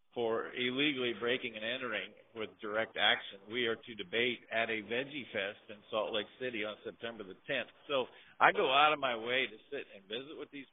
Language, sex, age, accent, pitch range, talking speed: English, male, 50-69, American, 125-165 Hz, 205 wpm